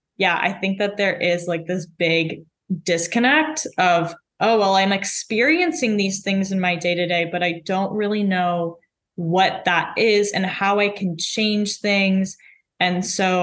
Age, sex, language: 10-29, female, English